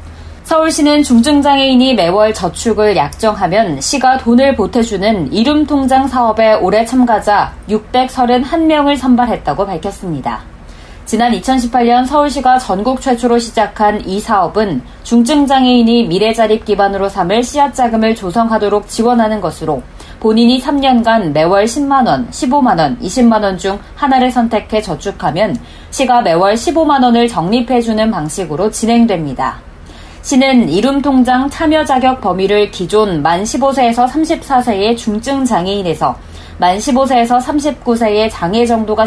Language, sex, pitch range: Korean, female, 195-255 Hz